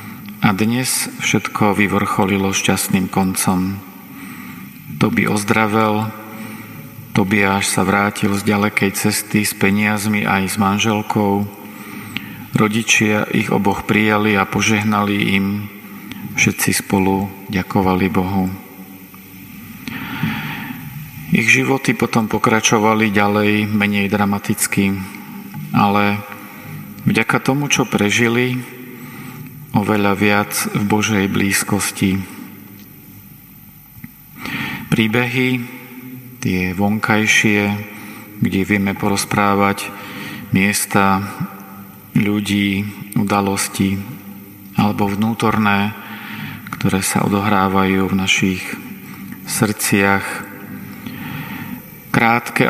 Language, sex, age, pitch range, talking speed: Slovak, male, 40-59, 100-110 Hz, 75 wpm